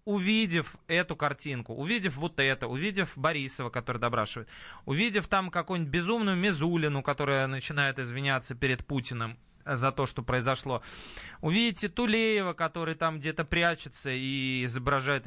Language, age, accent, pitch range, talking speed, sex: Russian, 20-39, native, 130-185 Hz, 125 wpm, male